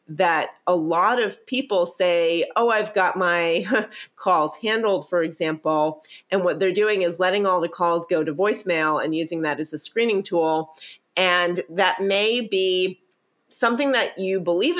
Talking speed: 165 wpm